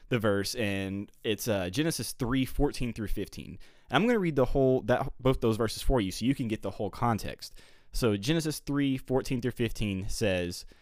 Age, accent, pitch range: 20-39, American, 100-125 Hz